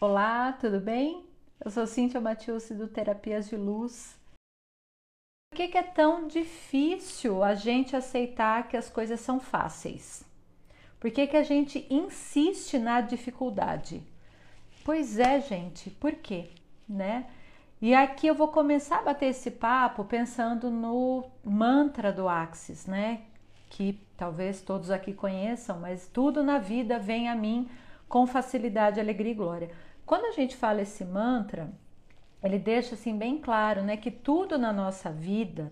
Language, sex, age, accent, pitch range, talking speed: Portuguese, female, 40-59, Brazilian, 205-255 Hz, 150 wpm